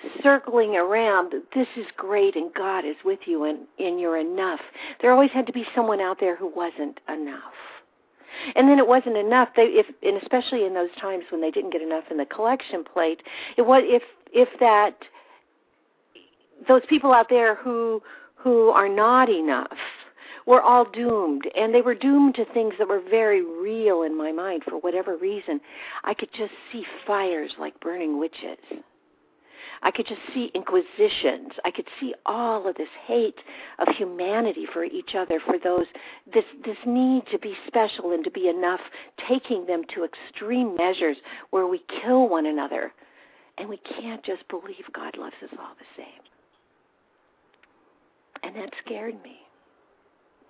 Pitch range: 185-260 Hz